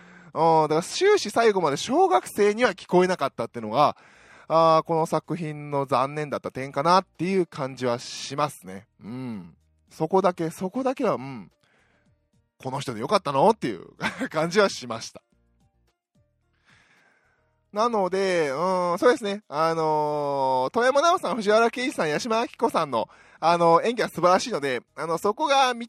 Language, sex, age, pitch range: Japanese, male, 20-39, 135-210 Hz